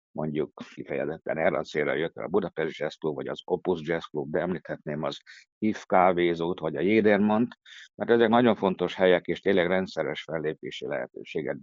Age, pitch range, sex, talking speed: 60-79, 90-110 Hz, male, 175 wpm